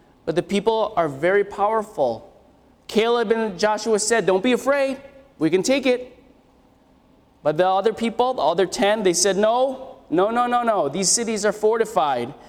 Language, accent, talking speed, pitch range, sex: English, American, 170 wpm, 180-250 Hz, male